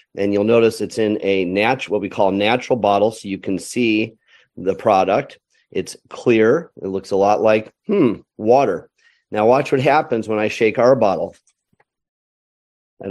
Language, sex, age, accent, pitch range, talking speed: English, male, 30-49, American, 105-125 Hz, 175 wpm